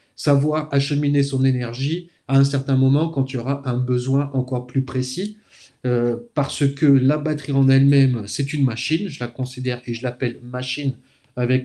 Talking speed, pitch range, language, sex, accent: 180 wpm, 125-140 Hz, French, male, French